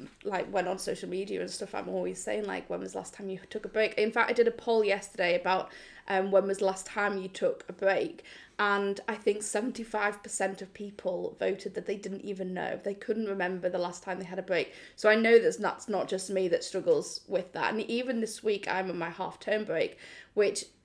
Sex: female